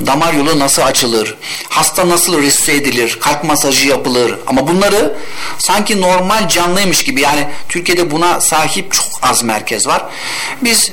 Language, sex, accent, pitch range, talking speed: Turkish, male, native, 130-170 Hz, 145 wpm